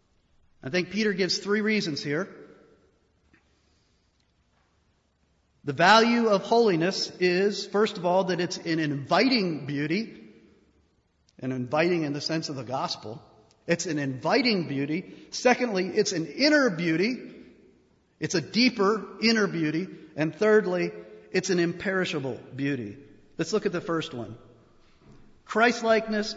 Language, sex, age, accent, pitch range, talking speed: English, male, 40-59, American, 160-210 Hz, 125 wpm